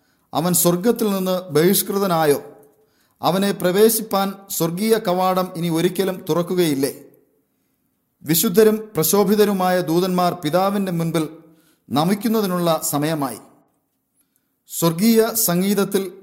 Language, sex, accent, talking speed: English, male, Indian, 90 wpm